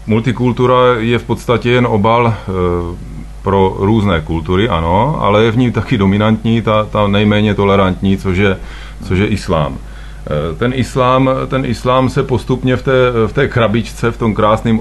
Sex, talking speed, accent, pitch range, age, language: male, 145 wpm, native, 95-115 Hz, 30-49, Czech